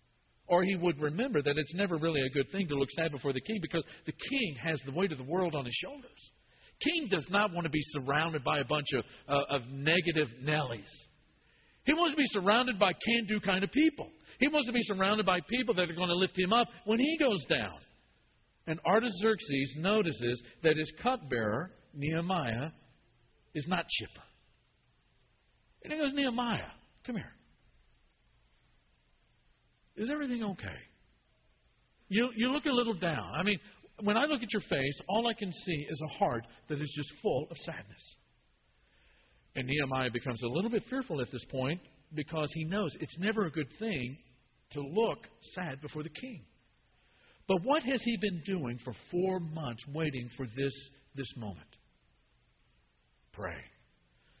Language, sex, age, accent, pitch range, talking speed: English, male, 50-69, American, 135-210 Hz, 175 wpm